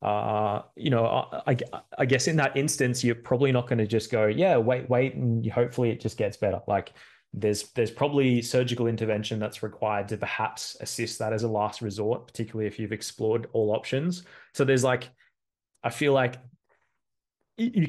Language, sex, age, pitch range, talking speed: English, male, 20-39, 105-125 Hz, 185 wpm